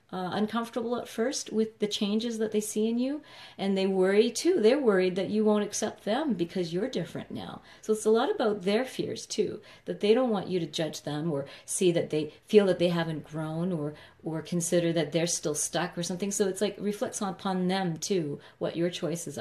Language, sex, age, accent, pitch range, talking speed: English, female, 40-59, American, 165-210 Hz, 225 wpm